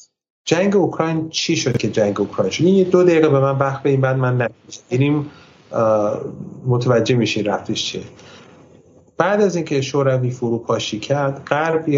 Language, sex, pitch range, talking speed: Persian, male, 115-165 Hz, 150 wpm